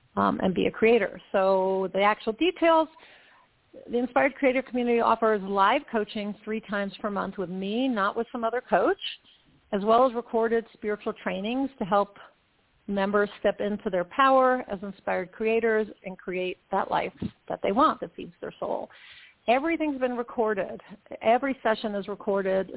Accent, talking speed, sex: American, 160 wpm, female